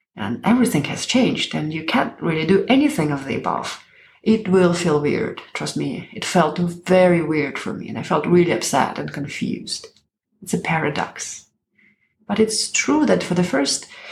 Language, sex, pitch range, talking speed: English, female, 155-200 Hz, 180 wpm